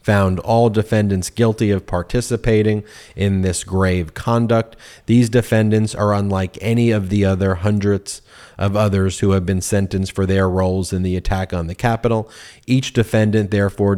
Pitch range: 90-110 Hz